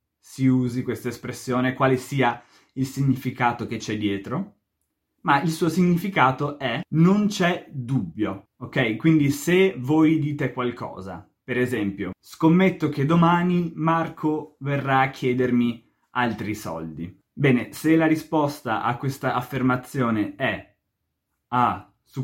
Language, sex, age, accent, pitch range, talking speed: Italian, male, 20-39, native, 115-155 Hz, 125 wpm